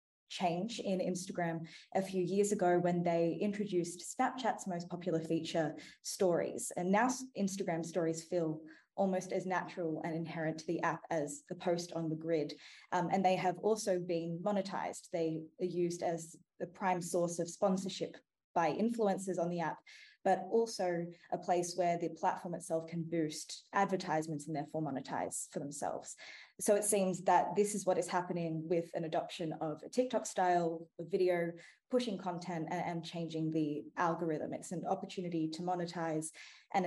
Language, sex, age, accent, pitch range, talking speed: English, female, 20-39, Australian, 160-185 Hz, 165 wpm